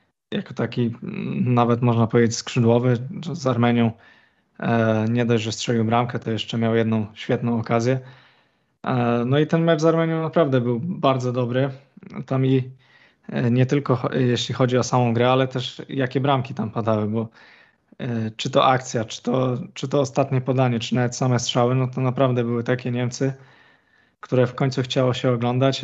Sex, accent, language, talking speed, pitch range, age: male, native, Polish, 165 wpm, 120-130 Hz, 20-39